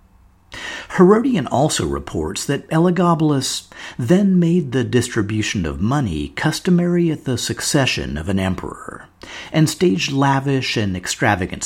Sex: male